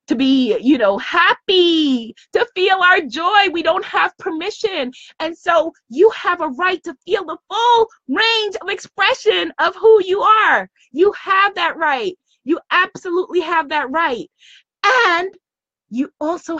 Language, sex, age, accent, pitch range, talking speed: English, female, 20-39, American, 255-370 Hz, 150 wpm